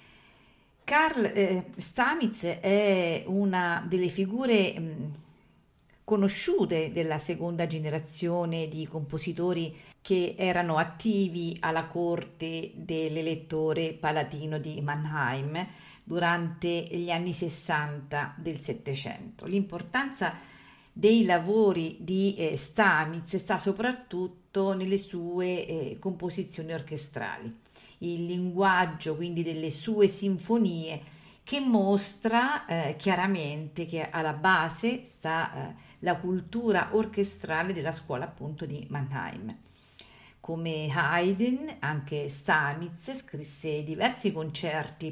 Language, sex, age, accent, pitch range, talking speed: Italian, female, 50-69, native, 155-190 Hz, 90 wpm